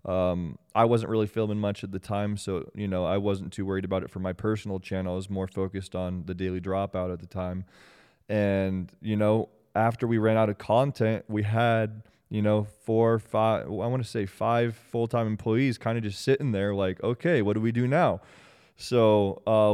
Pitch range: 95-115 Hz